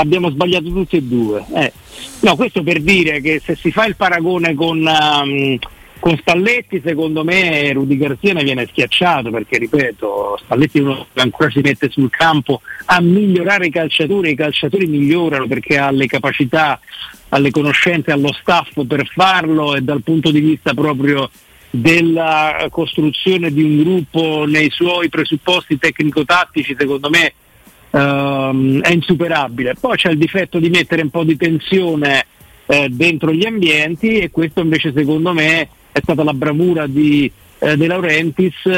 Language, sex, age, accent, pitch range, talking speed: Italian, male, 50-69, native, 150-175 Hz, 160 wpm